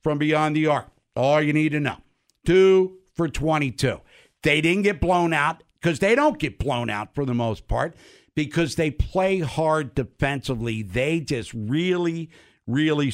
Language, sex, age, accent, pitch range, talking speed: English, male, 60-79, American, 140-195 Hz, 165 wpm